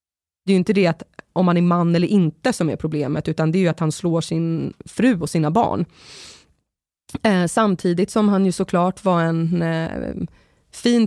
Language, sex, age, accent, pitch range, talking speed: Swedish, female, 20-39, native, 165-195 Hz, 190 wpm